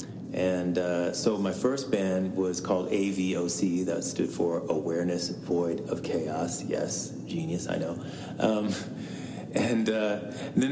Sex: male